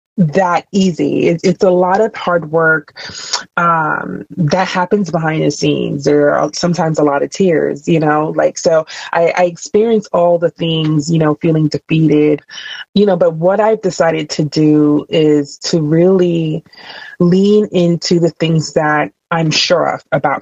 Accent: American